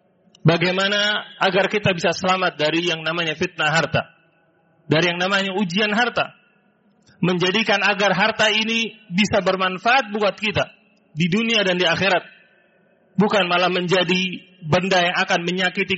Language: Indonesian